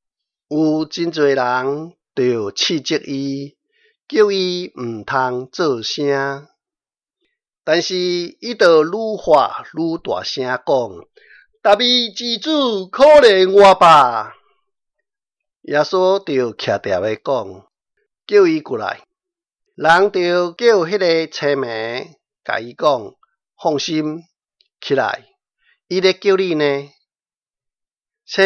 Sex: male